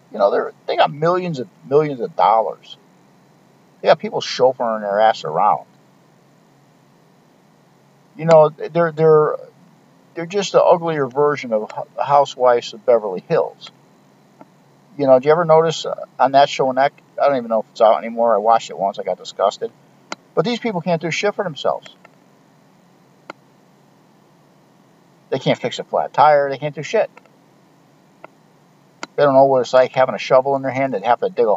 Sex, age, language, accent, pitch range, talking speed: male, 50-69, English, American, 125-170 Hz, 175 wpm